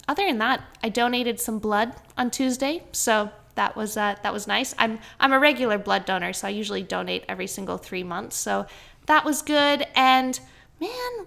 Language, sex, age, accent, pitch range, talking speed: English, female, 20-39, American, 205-275 Hz, 190 wpm